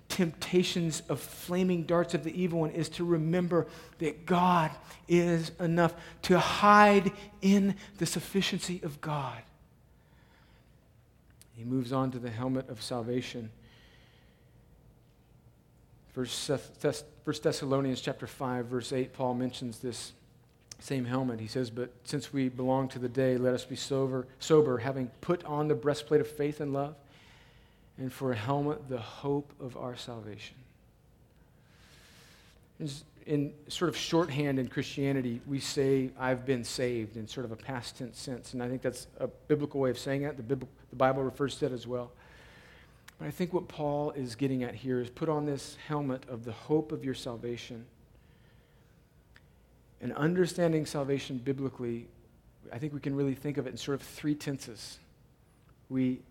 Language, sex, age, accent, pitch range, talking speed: English, male, 40-59, American, 125-155 Hz, 160 wpm